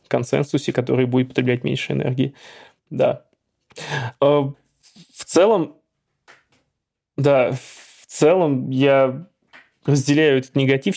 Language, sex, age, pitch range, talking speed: Russian, male, 20-39, 130-145 Hz, 90 wpm